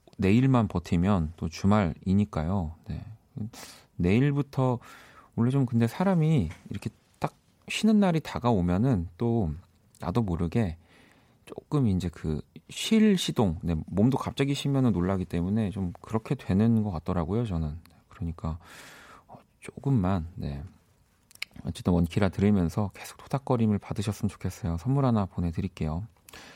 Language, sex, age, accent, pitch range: Korean, male, 40-59, native, 90-125 Hz